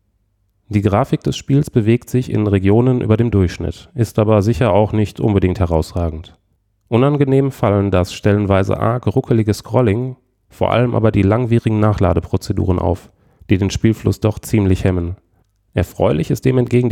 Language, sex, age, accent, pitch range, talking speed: German, male, 30-49, German, 95-115 Hz, 150 wpm